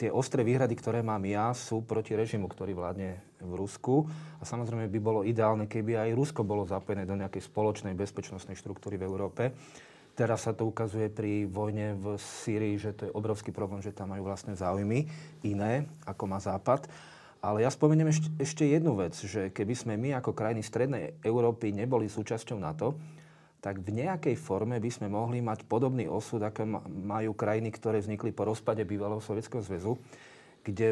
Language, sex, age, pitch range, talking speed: Slovak, male, 30-49, 105-120 Hz, 175 wpm